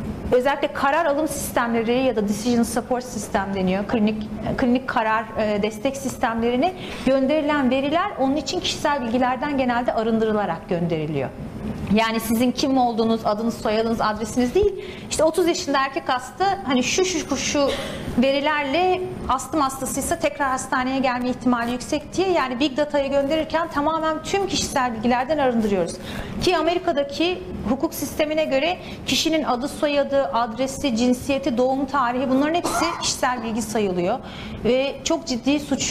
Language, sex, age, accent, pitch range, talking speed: Turkish, female, 40-59, native, 235-305 Hz, 135 wpm